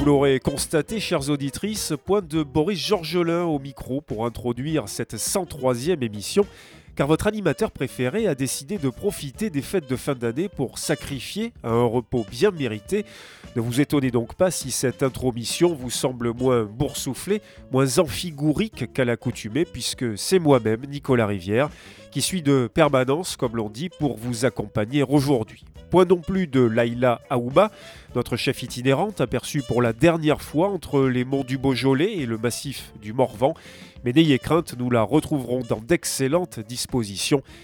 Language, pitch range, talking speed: French, 125-160 Hz, 160 wpm